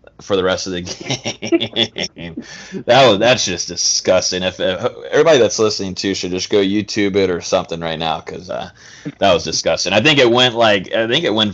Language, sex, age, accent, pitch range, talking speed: English, male, 20-39, American, 90-125 Hz, 210 wpm